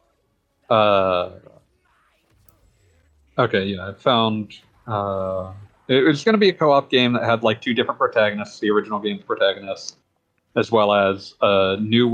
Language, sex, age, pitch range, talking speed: English, male, 40-59, 100-125 Hz, 145 wpm